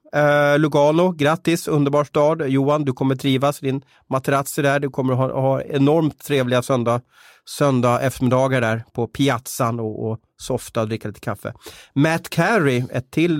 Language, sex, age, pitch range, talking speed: Swedish, male, 30-49, 125-150 Hz, 155 wpm